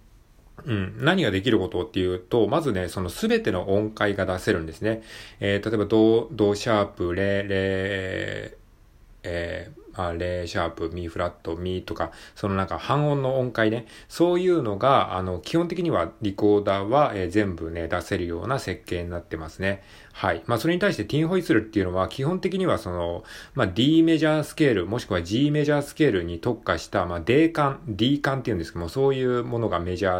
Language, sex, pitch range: Japanese, male, 90-135 Hz